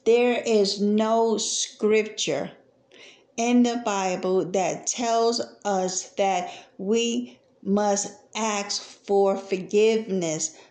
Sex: female